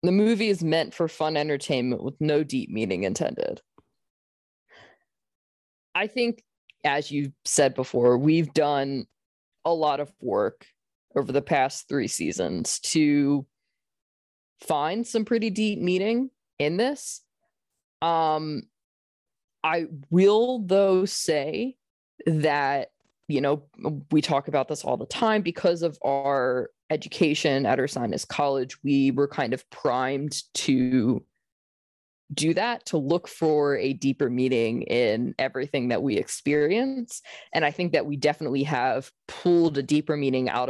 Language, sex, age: English, female, 20-39